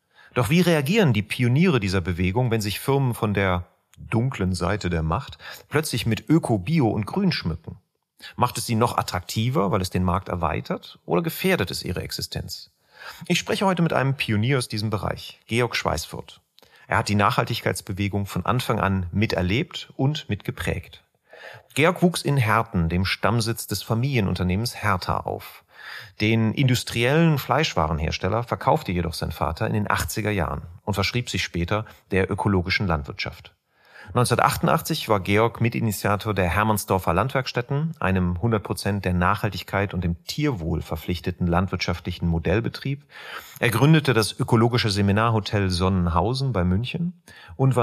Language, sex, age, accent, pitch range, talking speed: German, male, 40-59, German, 95-125 Hz, 140 wpm